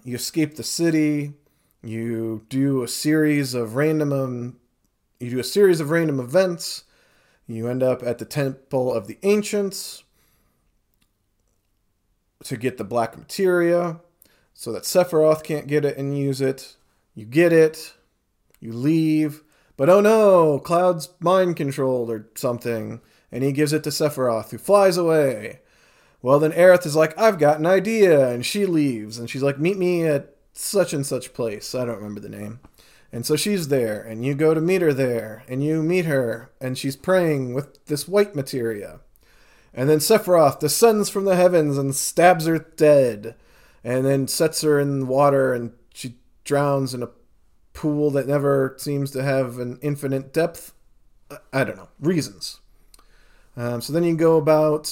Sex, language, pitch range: male, English, 125-160 Hz